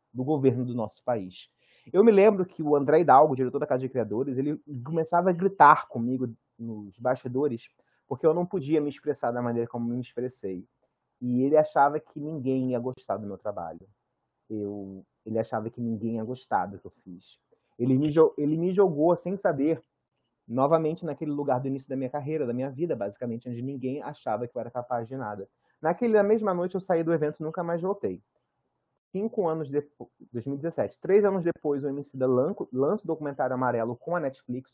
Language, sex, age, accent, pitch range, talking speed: Portuguese, male, 30-49, Brazilian, 125-170 Hz, 200 wpm